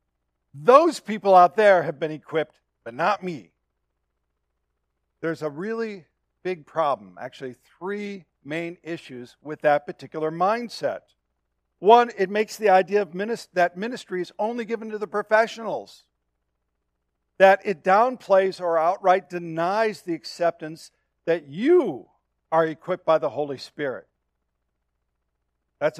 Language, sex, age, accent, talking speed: English, male, 50-69, American, 120 wpm